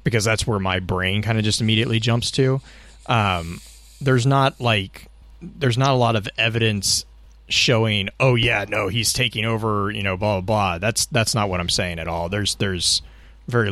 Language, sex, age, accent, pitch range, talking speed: English, male, 30-49, American, 90-115 Hz, 195 wpm